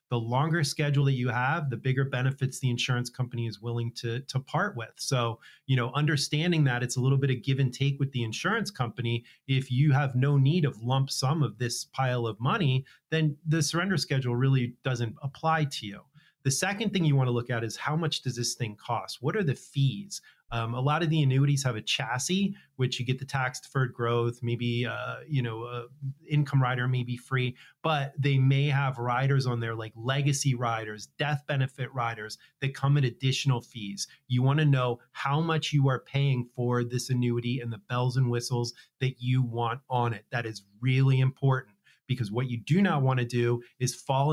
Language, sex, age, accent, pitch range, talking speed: English, male, 30-49, American, 120-140 Hz, 210 wpm